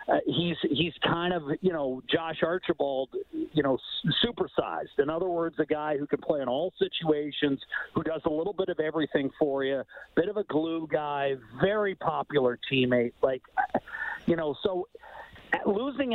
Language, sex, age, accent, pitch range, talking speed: English, male, 50-69, American, 145-180 Hz, 170 wpm